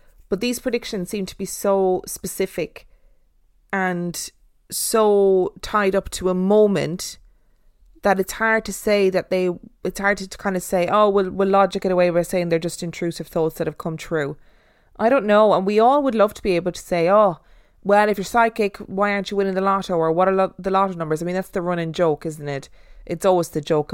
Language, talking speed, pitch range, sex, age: English, 215 wpm, 170-205 Hz, female, 20-39